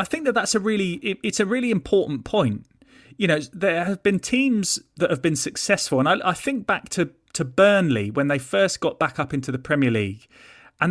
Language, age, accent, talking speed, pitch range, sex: English, 30-49, British, 220 wpm, 135-190 Hz, male